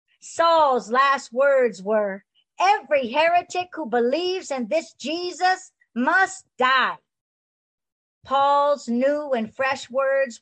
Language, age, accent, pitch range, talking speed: English, 50-69, American, 220-310 Hz, 105 wpm